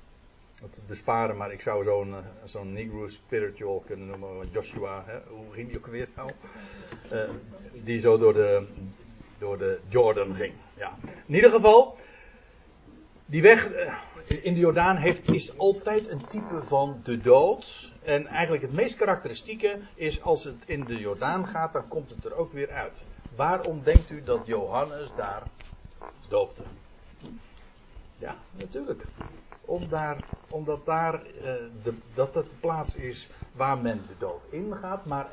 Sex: male